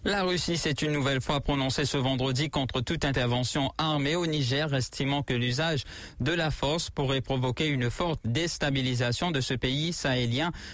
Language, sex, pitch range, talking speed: English, male, 125-155 Hz, 170 wpm